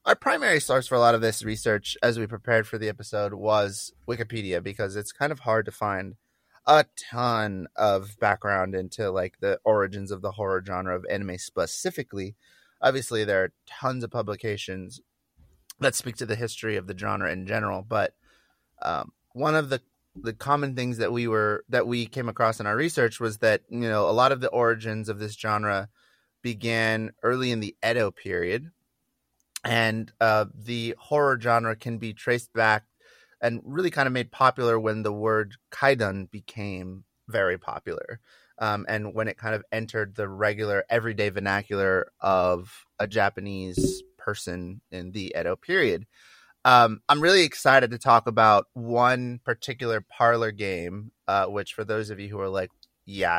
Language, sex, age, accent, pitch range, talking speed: English, male, 30-49, American, 100-120 Hz, 170 wpm